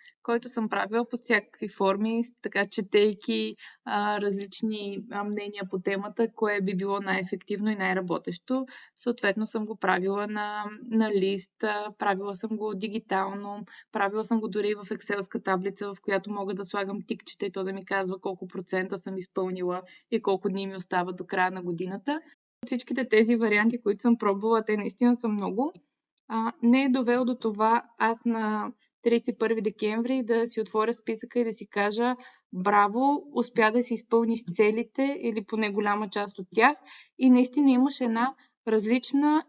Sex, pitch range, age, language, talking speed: female, 200-240 Hz, 20-39, Bulgarian, 165 wpm